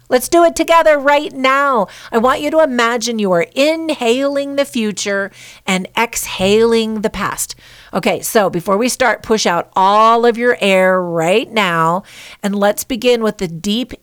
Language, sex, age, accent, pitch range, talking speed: English, female, 50-69, American, 150-220 Hz, 165 wpm